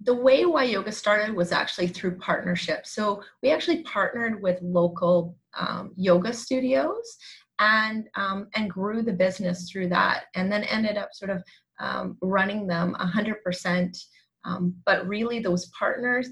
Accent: American